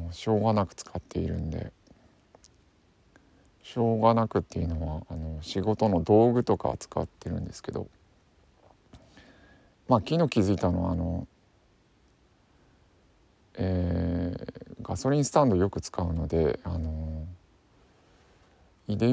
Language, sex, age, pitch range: Japanese, male, 50-69, 85-115 Hz